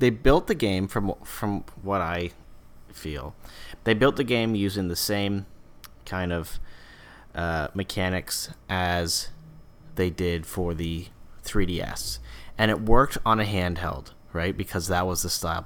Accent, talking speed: American, 155 wpm